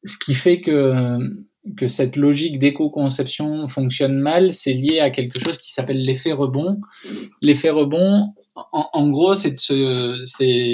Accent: French